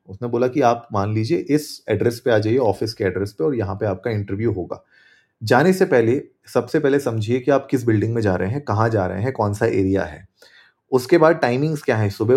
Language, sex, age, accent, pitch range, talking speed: Hindi, male, 30-49, native, 105-140 Hz, 235 wpm